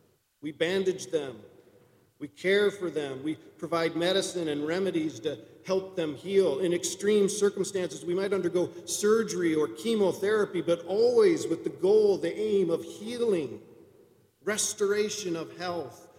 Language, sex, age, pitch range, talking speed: English, male, 50-69, 135-195 Hz, 135 wpm